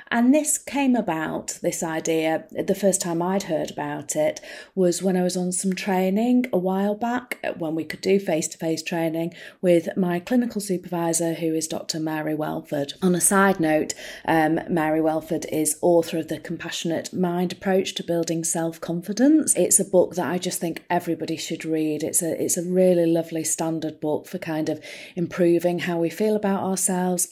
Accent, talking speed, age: British, 180 wpm, 30-49